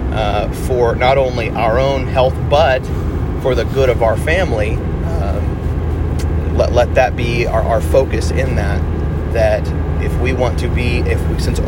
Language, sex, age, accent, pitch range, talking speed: English, male, 30-49, American, 80-100 Hz, 170 wpm